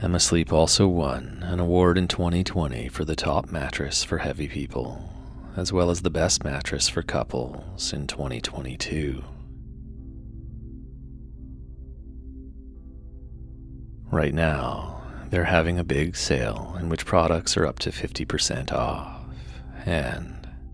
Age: 30-49